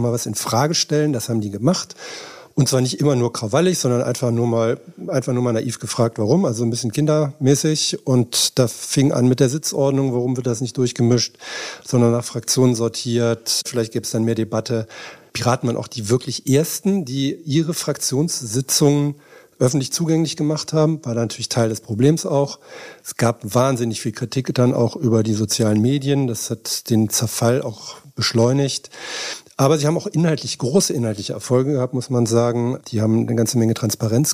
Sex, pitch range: male, 115-140 Hz